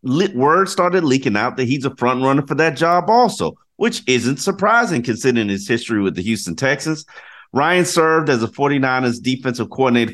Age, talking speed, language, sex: 30-49, 180 wpm, English, male